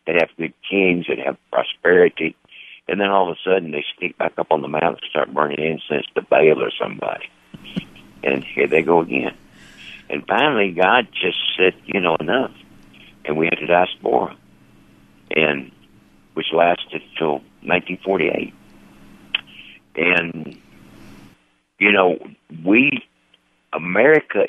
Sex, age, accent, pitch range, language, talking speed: male, 60-79, American, 70-85 Hz, English, 140 wpm